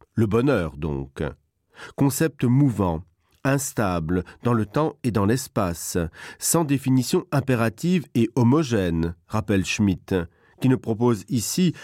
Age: 40-59